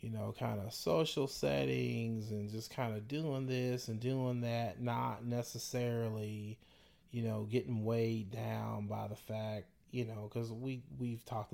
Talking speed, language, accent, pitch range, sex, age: 155 wpm, English, American, 110-125 Hz, male, 30-49